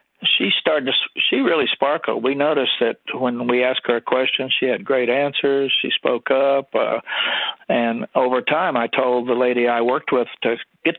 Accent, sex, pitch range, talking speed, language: American, male, 125-145 Hz, 190 wpm, English